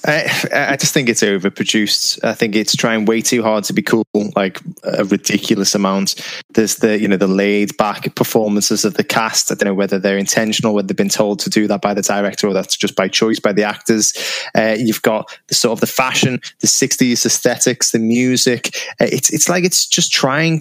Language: English